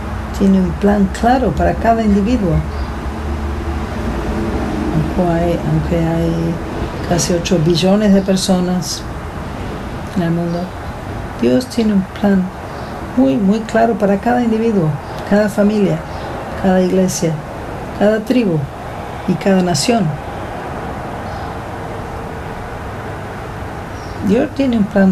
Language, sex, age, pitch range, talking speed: English, female, 50-69, 125-210 Hz, 100 wpm